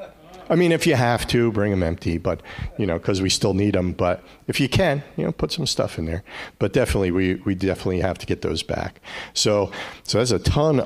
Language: English